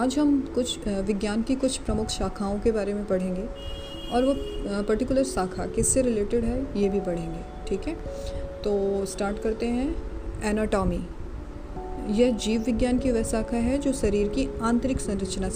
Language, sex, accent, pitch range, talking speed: Hindi, female, native, 195-240 Hz, 160 wpm